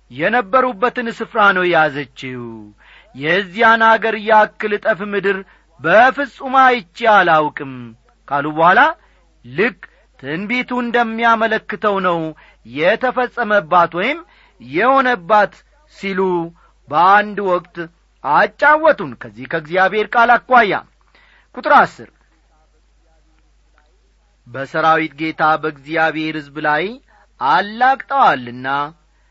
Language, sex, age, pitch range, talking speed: Amharic, male, 40-59, 165-225 Hz, 75 wpm